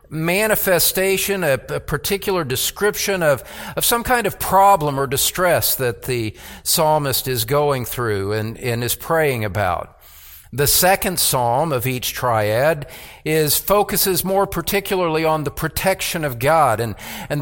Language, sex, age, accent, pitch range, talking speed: English, male, 50-69, American, 130-180 Hz, 140 wpm